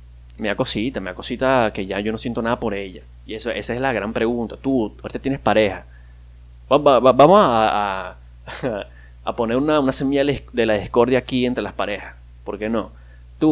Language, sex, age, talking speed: Spanish, male, 20-39, 210 wpm